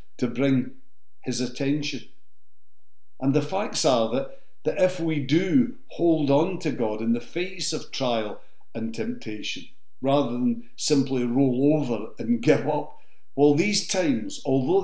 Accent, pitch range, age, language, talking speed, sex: British, 120-165 Hz, 60-79, English, 145 wpm, male